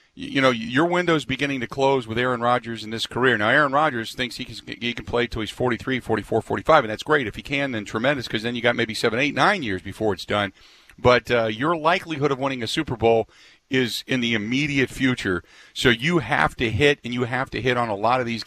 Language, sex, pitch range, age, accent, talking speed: English, male, 120-140 Hz, 40-59, American, 245 wpm